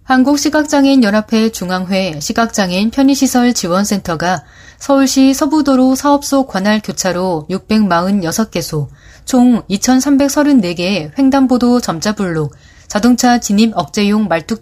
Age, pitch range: 30-49, 180-250 Hz